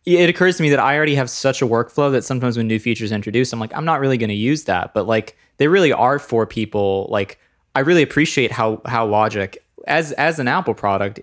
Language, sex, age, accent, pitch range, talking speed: English, male, 20-39, American, 105-130 Hz, 240 wpm